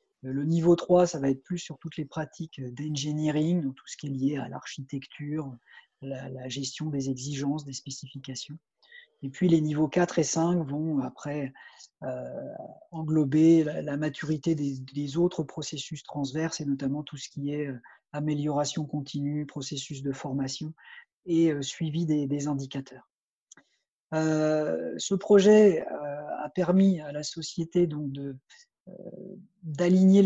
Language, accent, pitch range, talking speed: French, French, 145-175 Hz, 150 wpm